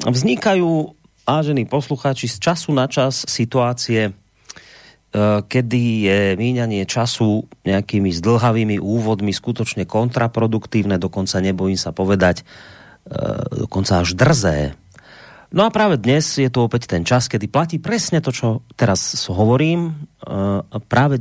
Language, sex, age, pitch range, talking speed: Slovak, male, 30-49, 105-135 Hz, 115 wpm